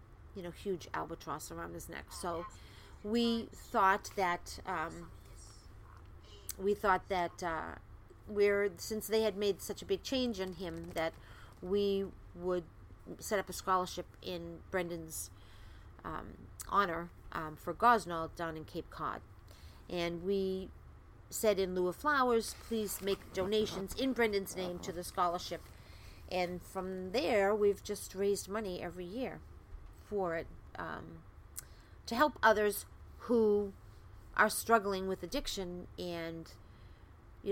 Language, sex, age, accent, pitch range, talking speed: English, female, 50-69, American, 155-195 Hz, 135 wpm